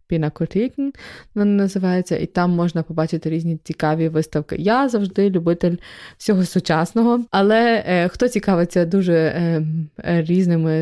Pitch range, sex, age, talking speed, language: 170-195 Hz, female, 20-39, 130 wpm, Ukrainian